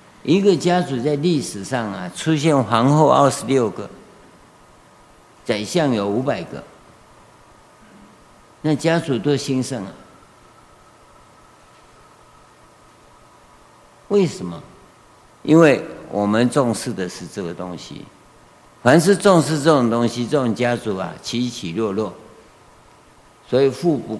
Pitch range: 115-155 Hz